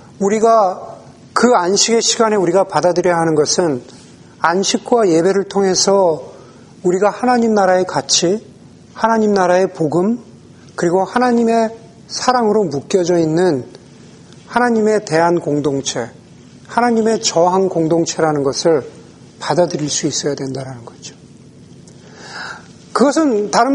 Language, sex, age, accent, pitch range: Korean, male, 40-59, native, 165-230 Hz